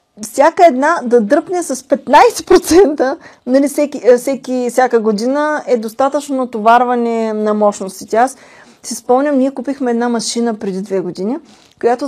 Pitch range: 230-295 Hz